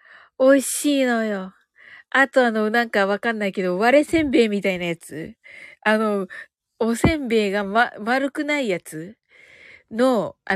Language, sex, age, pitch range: Japanese, female, 50-69, 230-315 Hz